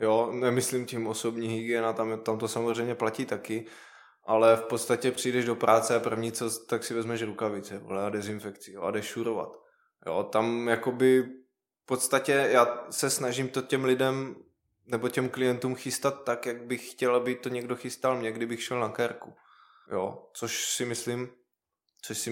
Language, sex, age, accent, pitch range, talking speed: Czech, male, 20-39, native, 115-130 Hz, 170 wpm